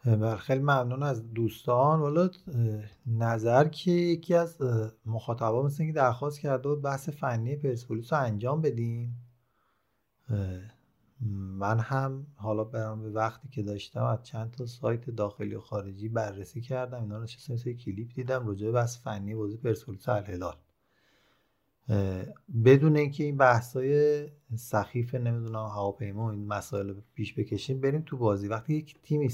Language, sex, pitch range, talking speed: Persian, male, 105-130 Hz, 145 wpm